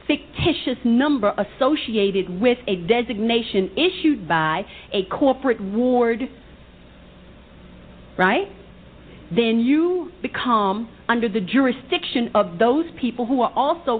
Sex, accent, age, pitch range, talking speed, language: female, American, 50-69, 185-265 Hz, 105 wpm, English